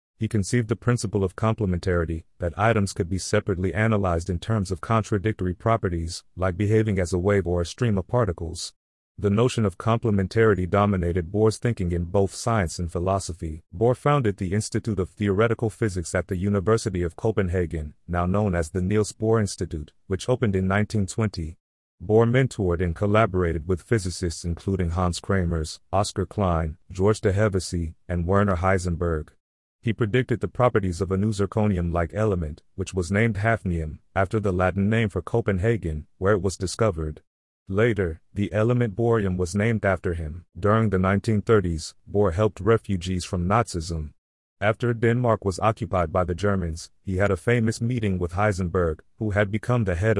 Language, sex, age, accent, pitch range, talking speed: English, male, 40-59, American, 90-110 Hz, 165 wpm